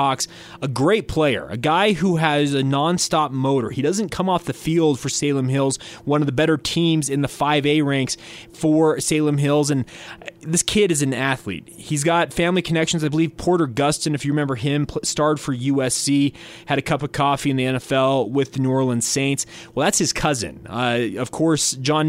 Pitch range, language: 135-155 Hz, English